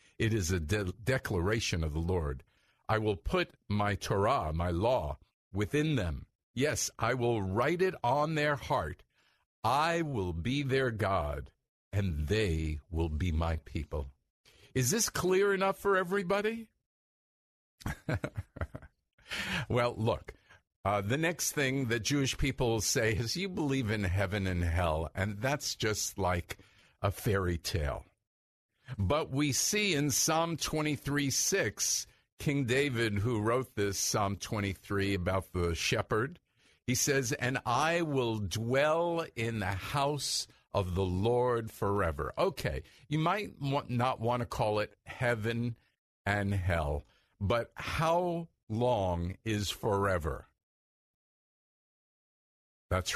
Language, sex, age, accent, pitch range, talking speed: English, male, 50-69, American, 95-135 Hz, 125 wpm